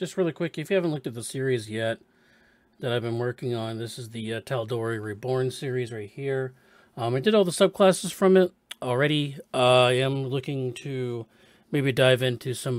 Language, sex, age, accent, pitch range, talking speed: English, male, 40-59, American, 120-160 Hz, 200 wpm